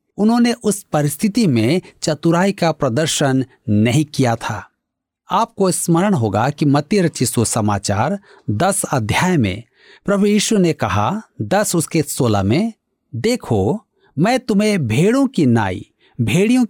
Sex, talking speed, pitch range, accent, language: male, 125 wpm, 130-195 Hz, native, Hindi